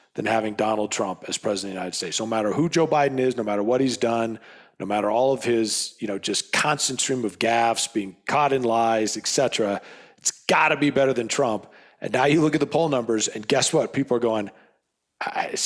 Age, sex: 40-59, male